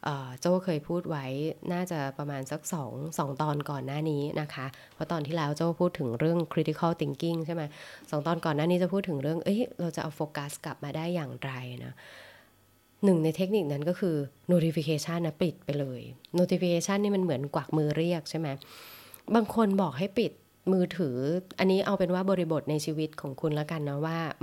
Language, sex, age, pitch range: Thai, female, 20-39, 140-175 Hz